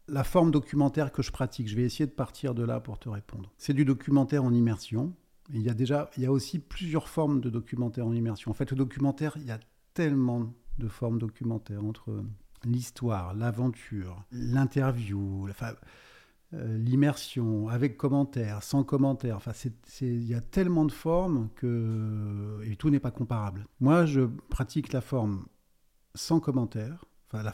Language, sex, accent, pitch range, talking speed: French, male, French, 115-140 Hz, 170 wpm